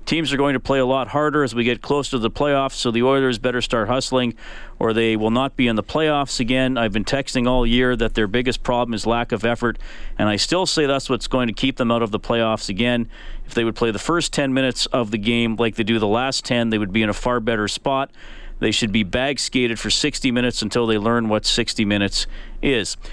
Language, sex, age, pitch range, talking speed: English, male, 40-59, 115-140 Hz, 250 wpm